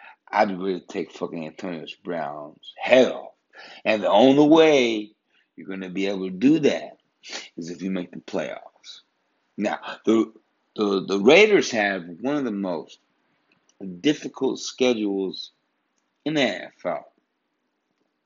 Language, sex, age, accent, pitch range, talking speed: English, male, 50-69, American, 100-145 Hz, 150 wpm